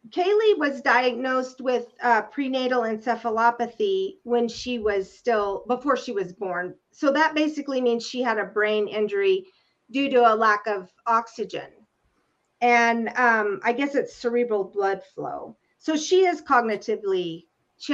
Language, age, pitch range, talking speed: English, 40-59, 220-275 Hz, 145 wpm